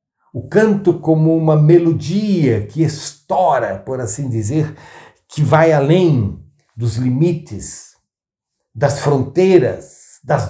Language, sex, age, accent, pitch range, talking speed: Portuguese, male, 60-79, Brazilian, 115-170 Hz, 105 wpm